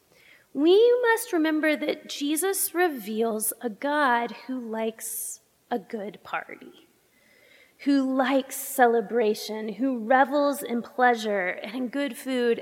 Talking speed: 115 wpm